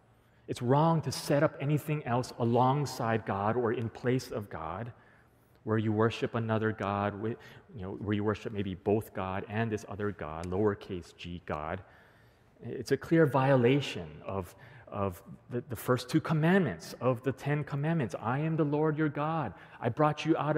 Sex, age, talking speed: male, 30-49, 170 wpm